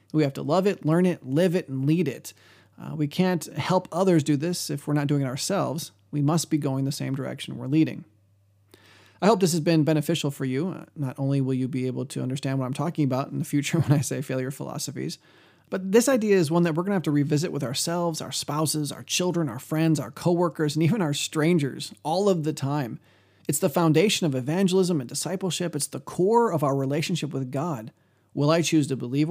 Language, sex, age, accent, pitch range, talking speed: English, male, 30-49, American, 135-170 Hz, 230 wpm